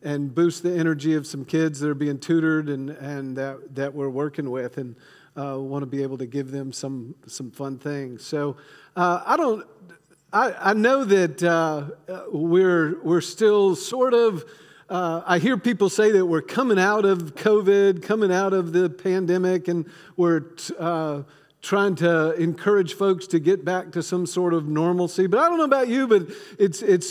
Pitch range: 160-200 Hz